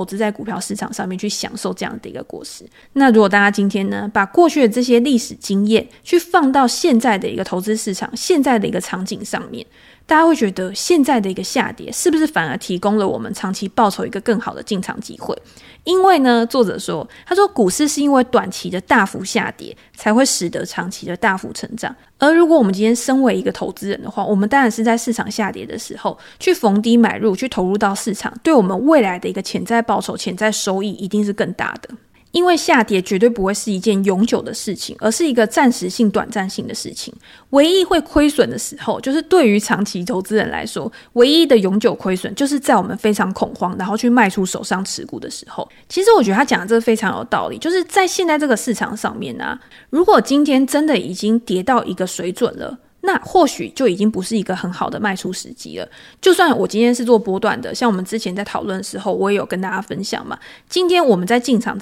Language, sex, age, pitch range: Chinese, female, 20-39, 200-260 Hz